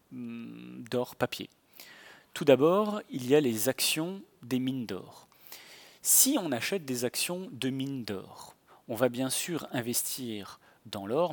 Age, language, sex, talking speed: 30-49, French, male, 145 wpm